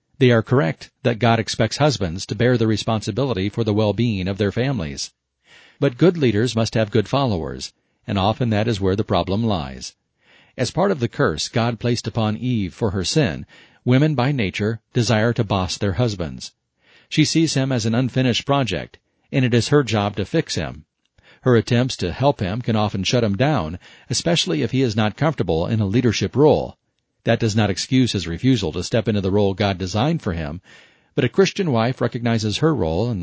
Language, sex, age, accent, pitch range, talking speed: English, male, 40-59, American, 100-125 Hz, 200 wpm